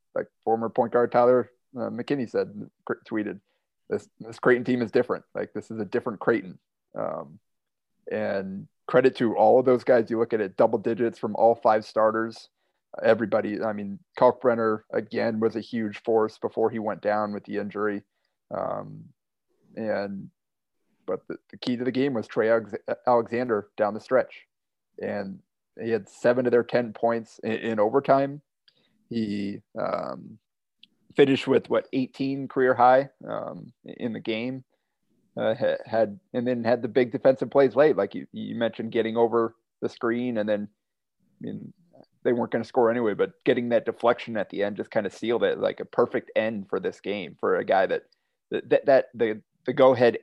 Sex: male